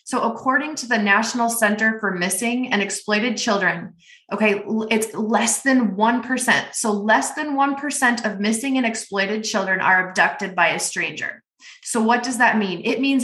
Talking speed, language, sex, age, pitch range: 170 wpm, English, female, 20-39, 190-230 Hz